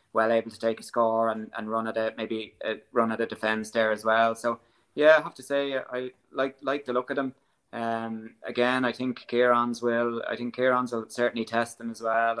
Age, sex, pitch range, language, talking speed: 20-39, male, 110-120 Hz, English, 230 wpm